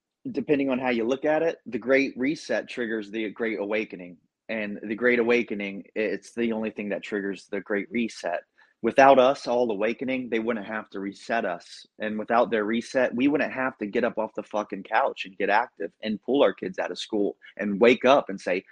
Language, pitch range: English, 105-125 Hz